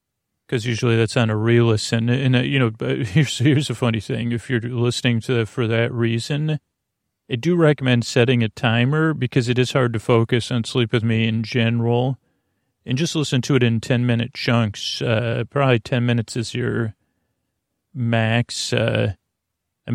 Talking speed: 185 wpm